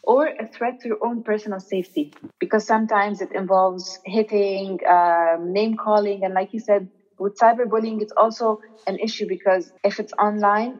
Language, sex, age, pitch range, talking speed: English, female, 20-39, 190-220 Hz, 165 wpm